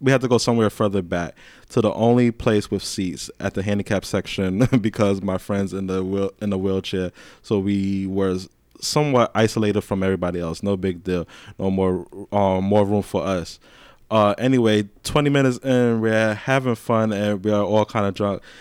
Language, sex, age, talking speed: English, male, 20-39, 185 wpm